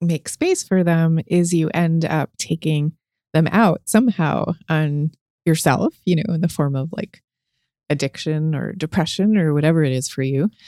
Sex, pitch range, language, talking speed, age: female, 155-185 Hz, English, 170 wpm, 30-49